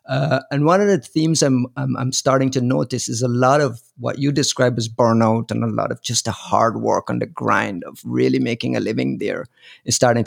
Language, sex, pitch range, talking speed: English, male, 115-140 Hz, 235 wpm